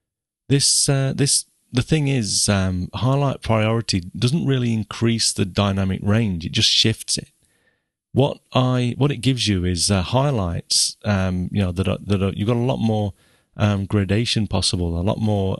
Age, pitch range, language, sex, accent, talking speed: 30-49, 95-115 Hz, English, male, British, 175 wpm